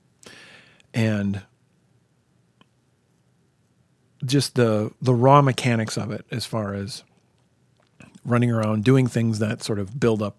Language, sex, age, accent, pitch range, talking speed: English, male, 40-59, American, 105-130 Hz, 115 wpm